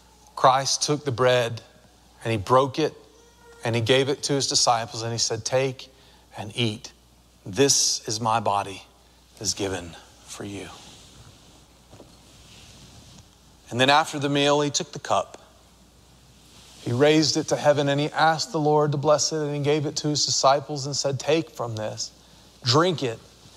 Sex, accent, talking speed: male, American, 165 wpm